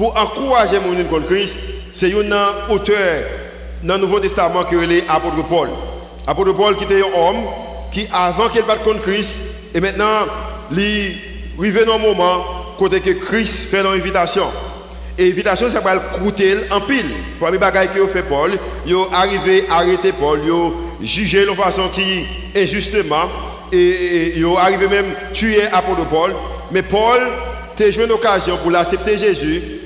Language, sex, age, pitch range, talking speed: French, male, 50-69, 180-215 Hz, 170 wpm